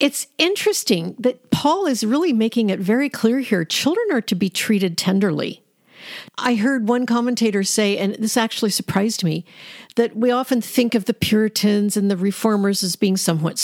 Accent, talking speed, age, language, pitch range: American, 175 wpm, 50-69, English, 200-265 Hz